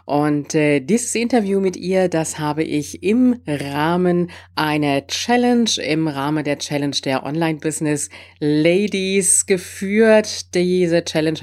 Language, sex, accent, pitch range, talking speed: German, female, German, 135-190 Hz, 115 wpm